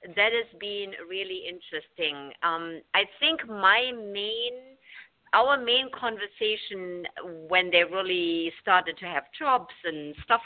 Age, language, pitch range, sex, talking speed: 50-69, English, 155-210 Hz, female, 125 wpm